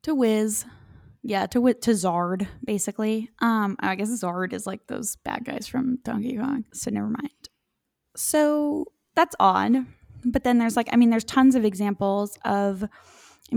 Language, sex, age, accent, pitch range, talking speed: English, female, 10-29, American, 195-240 Hz, 170 wpm